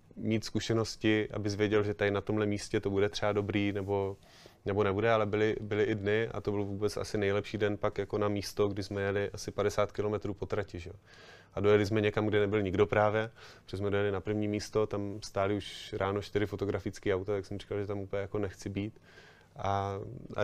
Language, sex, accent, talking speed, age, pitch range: Czech, male, native, 210 wpm, 30-49, 100-110 Hz